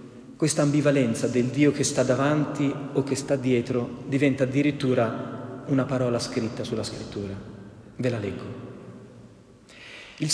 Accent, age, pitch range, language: native, 40-59, 115-150 Hz, Italian